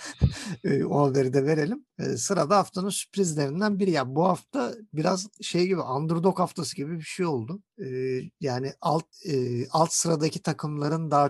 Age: 50-69